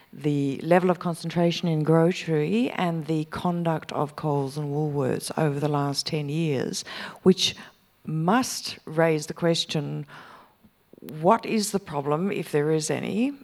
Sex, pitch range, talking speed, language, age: female, 150-195 Hz, 140 wpm, English, 50-69